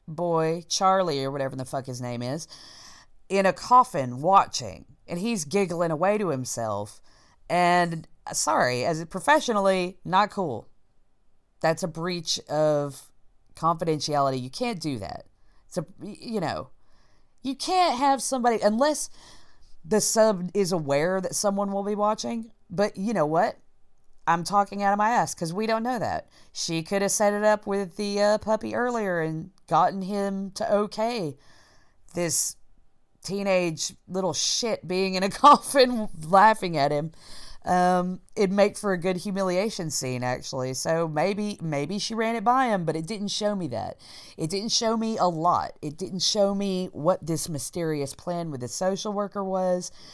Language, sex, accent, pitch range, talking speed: English, female, American, 160-205 Hz, 165 wpm